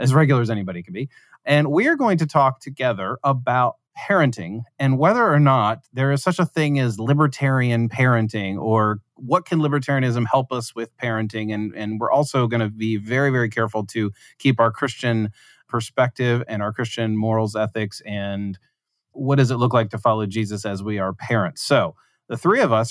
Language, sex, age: English, male, 30-49